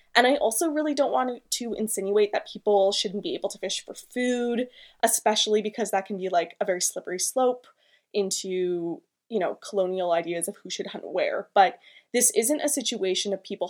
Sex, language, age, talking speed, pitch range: female, English, 20-39, 195 wpm, 200-255 Hz